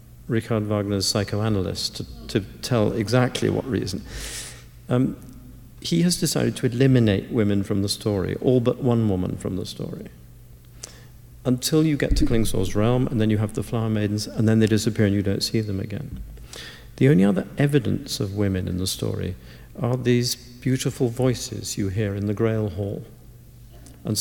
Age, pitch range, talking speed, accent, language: 50-69, 105-125 Hz, 170 wpm, British, English